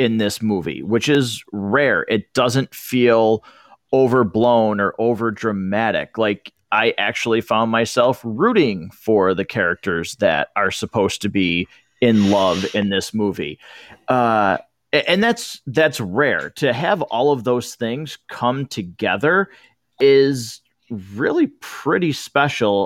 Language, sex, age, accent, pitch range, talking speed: English, male, 30-49, American, 105-125 Hz, 130 wpm